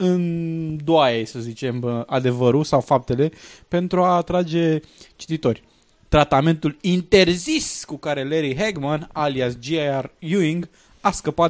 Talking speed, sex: 115 wpm, male